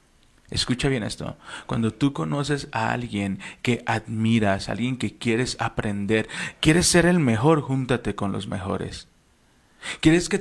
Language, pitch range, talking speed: Spanish, 110-140 Hz, 140 wpm